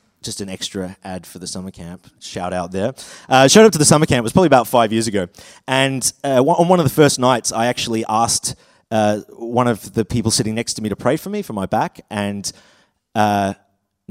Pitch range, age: 105-145 Hz, 30-49